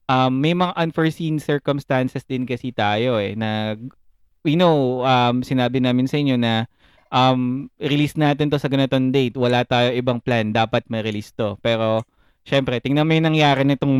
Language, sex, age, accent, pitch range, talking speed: Filipino, male, 20-39, native, 115-140 Hz, 180 wpm